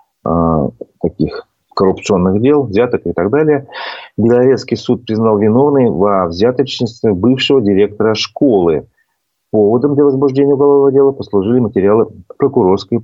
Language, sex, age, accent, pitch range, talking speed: Russian, male, 40-59, native, 95-135 Hz, 110 wpm